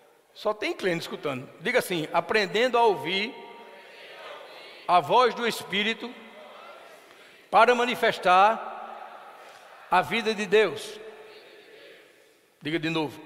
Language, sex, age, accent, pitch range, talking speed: Portuguese, male, 60-79, Brazilian, 170-230 Hz, 100 wpm